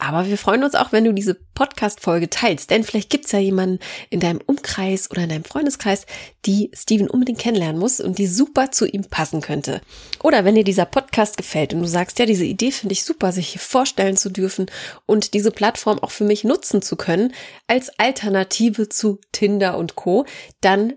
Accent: German